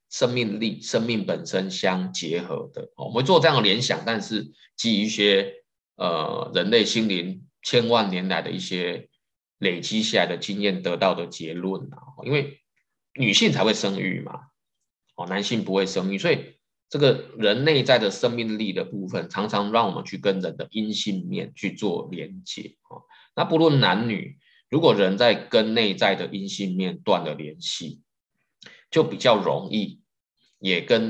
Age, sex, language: 20-39, male, Chinese